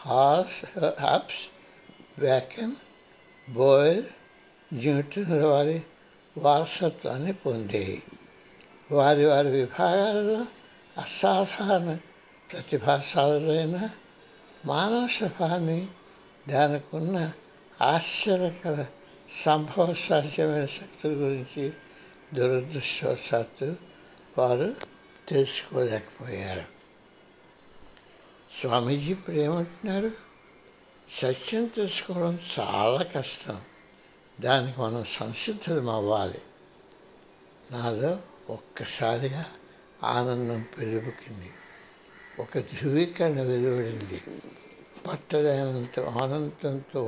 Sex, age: male, 60-79